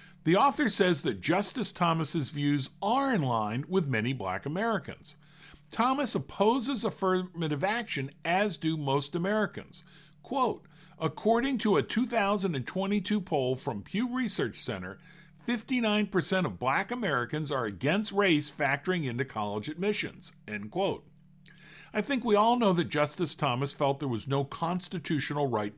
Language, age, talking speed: English, 50-69, 135 wpm